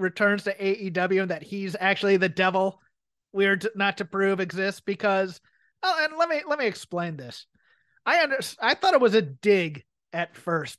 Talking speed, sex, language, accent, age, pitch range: 185 wpm, male, English, American, 30-49, 175-220 Hz